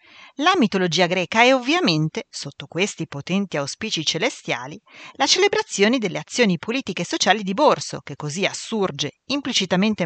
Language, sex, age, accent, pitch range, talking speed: Italian, female, 40-59, native, 155-225 Hz, 135 wpm